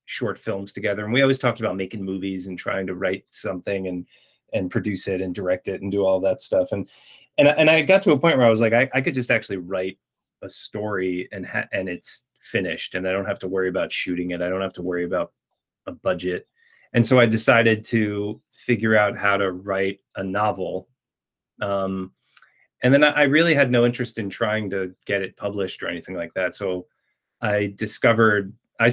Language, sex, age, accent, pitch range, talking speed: English, male, 30-49, American, 95-115 Hz, 220 wpm